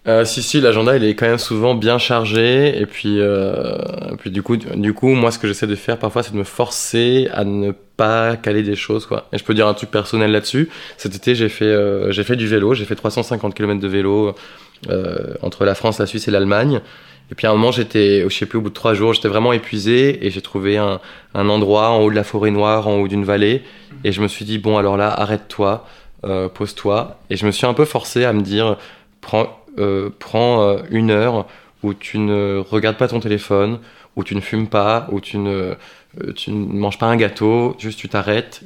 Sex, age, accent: male, 20-39, French